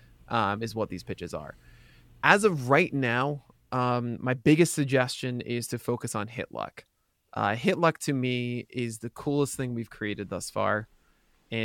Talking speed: 165 wpm